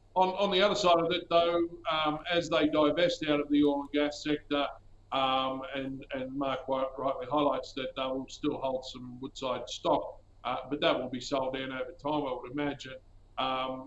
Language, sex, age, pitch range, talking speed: English, male, 50-69, 130-150 Hz, 200 wpm